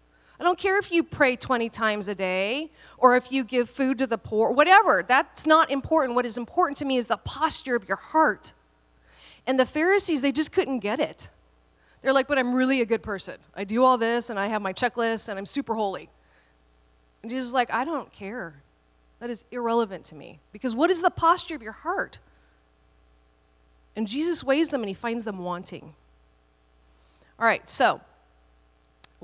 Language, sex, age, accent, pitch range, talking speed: English, female, 30-49, American, 185-265 Hz, 195 wpm